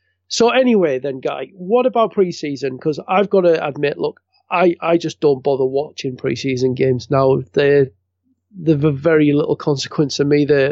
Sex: male